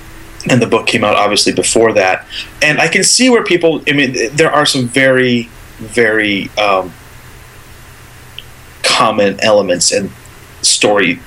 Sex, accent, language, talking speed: male, American, English, 140 wpm